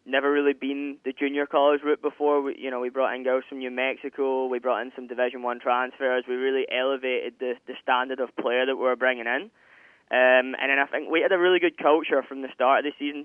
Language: English